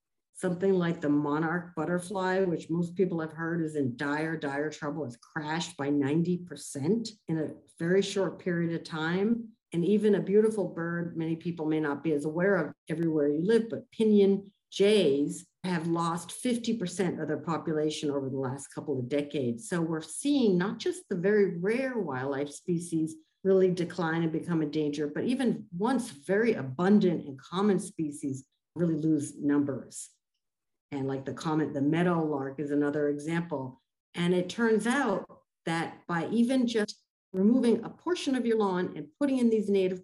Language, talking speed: English, 170 wpm